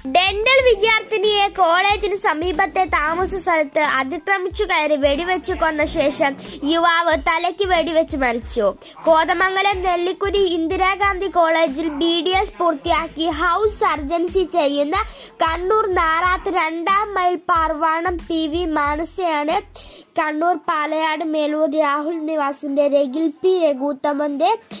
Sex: female